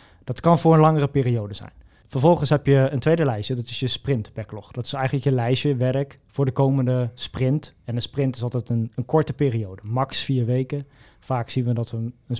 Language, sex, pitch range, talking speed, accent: Dutch, male, 120-145 Hz, 220 wpm, Dutch